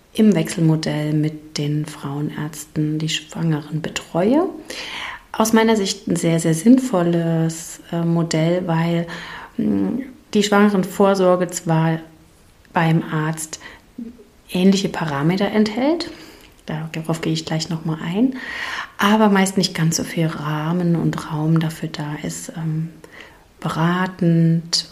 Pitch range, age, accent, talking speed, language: 155-190 Hz, 30-49, German, 115 wpm, German